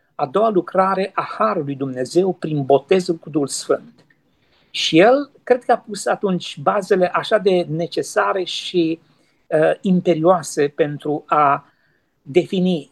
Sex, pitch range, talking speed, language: male, 165-210 Hz, 125 wpm, Romanian